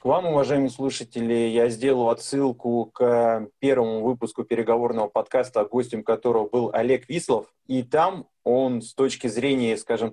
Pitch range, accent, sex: 110-135 Hz, native, male